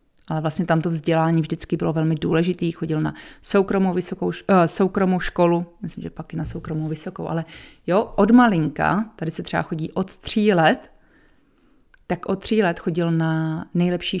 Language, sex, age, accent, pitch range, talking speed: Czech, female, 30-49, native, 165-205 Hz, 165 wpm